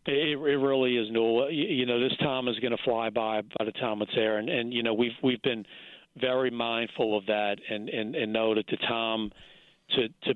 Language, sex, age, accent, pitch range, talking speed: English, male, 40-59, American, 105-115 Hz, 230 wpm